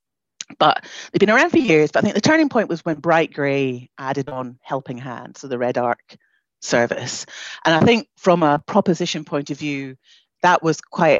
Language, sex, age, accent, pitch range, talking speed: English, female, 40-59, British, 135-175 Hz, 200 wpm